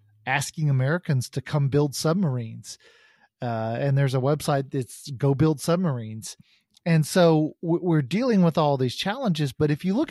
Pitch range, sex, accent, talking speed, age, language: 130-165 Hz, male, American, 160 wpm, 40-59, English